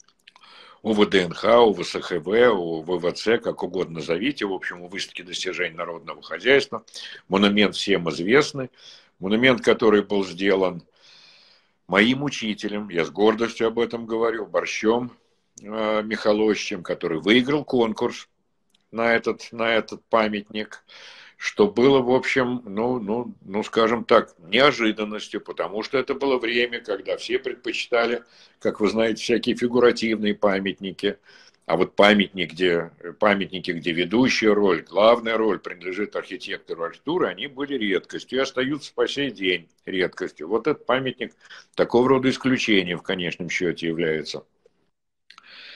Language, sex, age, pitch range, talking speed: Russian, male, 60-79, 95-125 Hz, 125 wpm